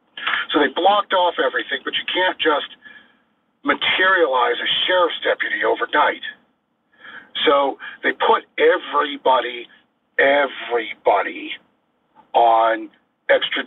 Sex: male